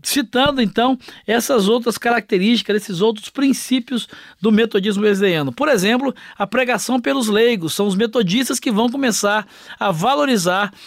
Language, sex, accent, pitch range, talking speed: Portuguese, male, Brazilian, 200-245 Hz, 140 wpm